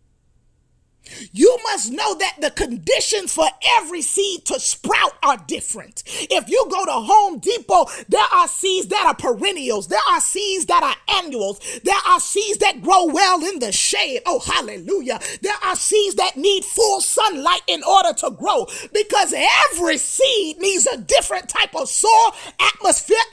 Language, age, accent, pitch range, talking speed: English, 30-49, American, 305-425 Hz, 160 wpm